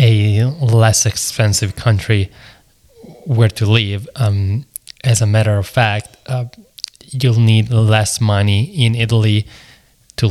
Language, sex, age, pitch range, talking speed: English, male, 20-39, 105-125 Hz, 120 wpm